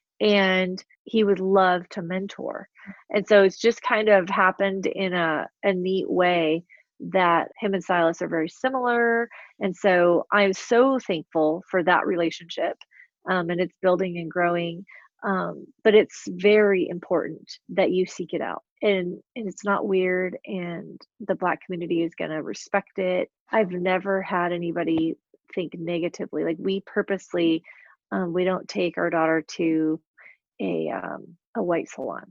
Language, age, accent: English, 30-49, American